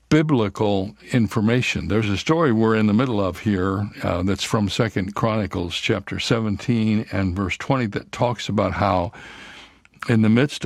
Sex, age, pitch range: male, 60-79, 95-115 Hz